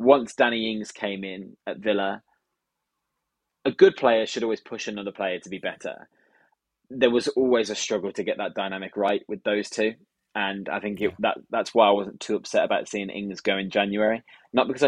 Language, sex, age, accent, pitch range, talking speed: English, male, 20-39, British, 100-115 Hz, 200 wpm